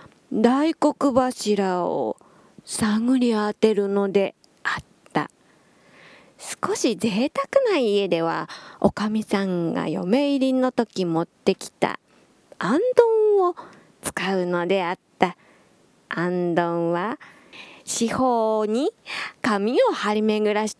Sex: female